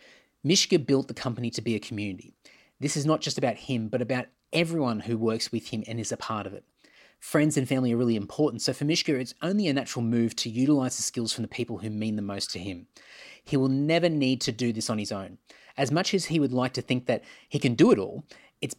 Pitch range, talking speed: 110-140 Hz, 250 wpm